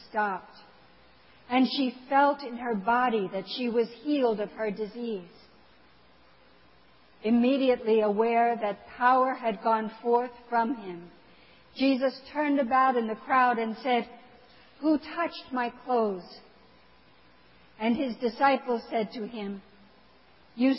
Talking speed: 120 wpm